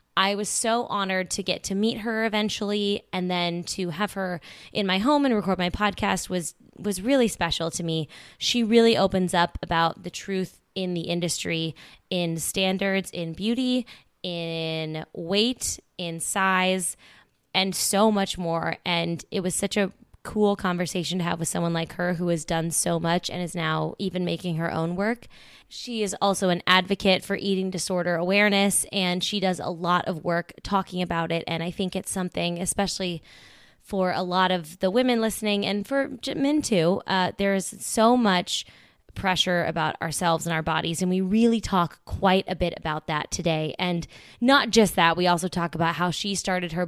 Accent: American